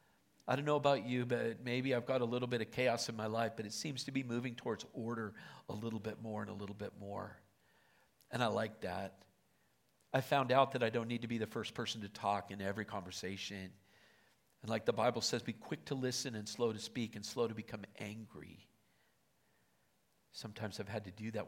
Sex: male